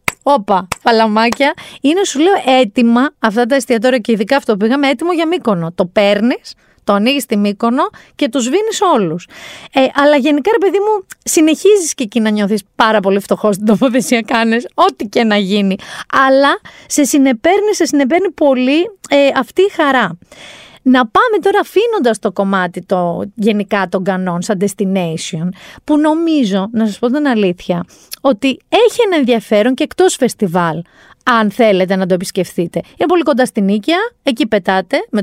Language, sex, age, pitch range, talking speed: Greek, female, 30-49, 205-305 Hz, 165 wpm